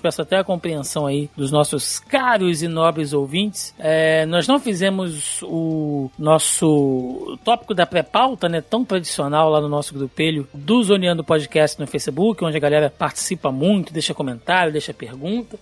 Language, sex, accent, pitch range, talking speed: Portuguese, male, Brazilian, 155-200 Hz, 160 wpm